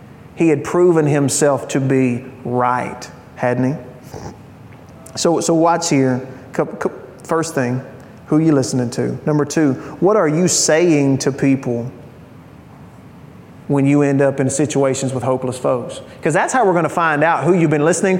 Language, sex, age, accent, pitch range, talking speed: English, male, 30-49, American, 130-150 Hz, 160 wpm